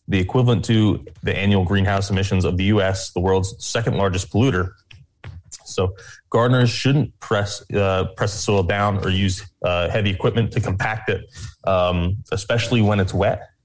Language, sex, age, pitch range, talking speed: English, male, 20-39, 95-110 Hz, 165 wpm